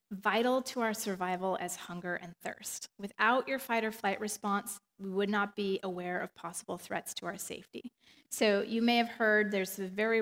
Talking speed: 180 wpm